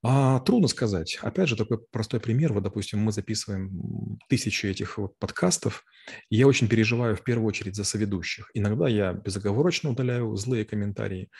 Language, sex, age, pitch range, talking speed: Russian, male, 30-49, 95-115 Hz, 160 wpm